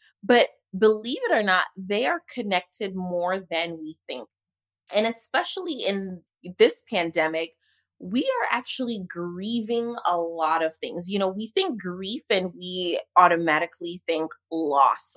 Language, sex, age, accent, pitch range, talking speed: English, female, 30-49, American, 170-225 Hz, 140 wpm